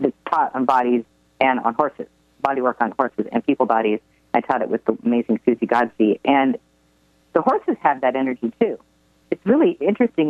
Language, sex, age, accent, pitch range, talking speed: English, female, 40-59, American, 115-175 Hz, 185 wpm